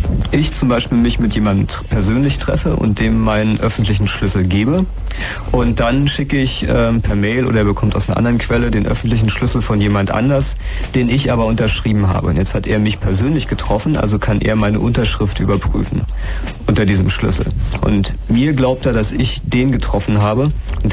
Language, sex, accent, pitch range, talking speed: German, male, German, 100-120 Hz, 185 wpm